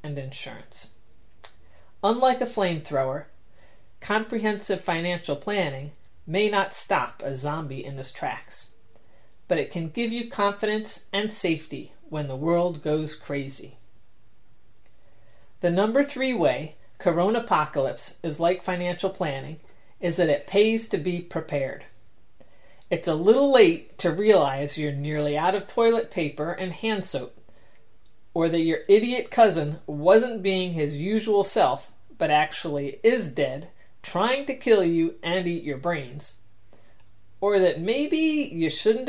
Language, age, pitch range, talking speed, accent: English, 30-49, 140-205 Hz, 135 wpm, American